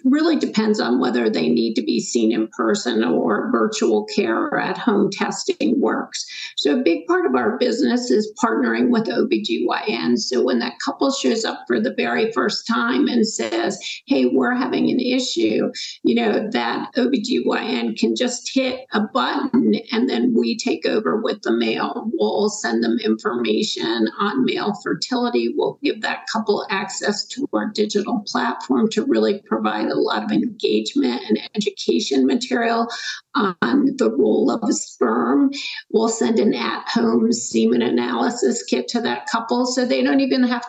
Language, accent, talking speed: English, American, 165 wpm